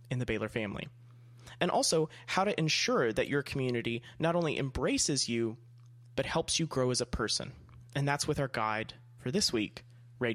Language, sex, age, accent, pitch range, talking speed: English, male, 30-49, American, 120-140 Hz, 185 wpm